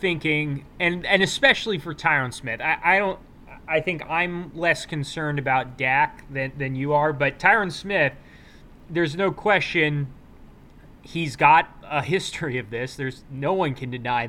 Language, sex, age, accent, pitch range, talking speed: English, male, 20-39, American, 140-180 Hz, 160 wpm